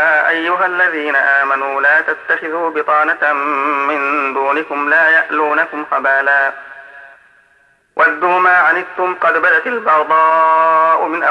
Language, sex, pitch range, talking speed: Arabic, male, 145-165 Hz, 100 wpm